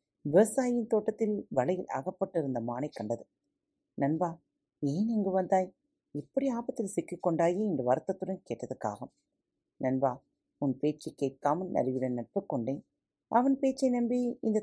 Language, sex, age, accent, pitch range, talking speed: Tamil, female, 40-59, native, 135-205 Hz, 115 wpm